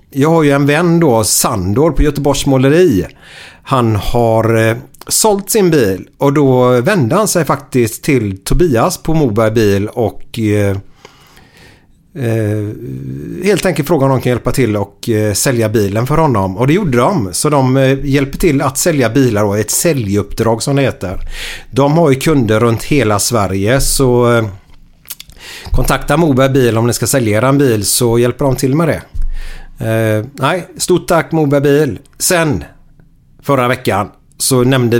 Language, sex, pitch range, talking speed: Swedish, male, 115-150 Hz, 155 wpm